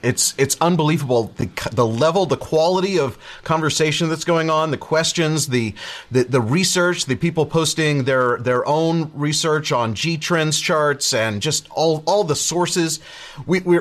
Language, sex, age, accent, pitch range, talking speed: English, male, 30-49, American, 130-160 Hz, 160 wpm